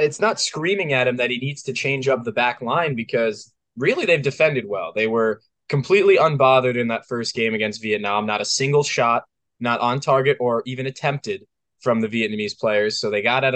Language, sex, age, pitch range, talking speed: English, male, 20-39, 115-140 Hz, 210 wpm